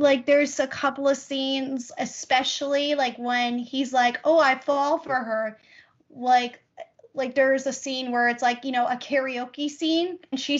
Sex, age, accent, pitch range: female, 10-29, American, 245-295 Hz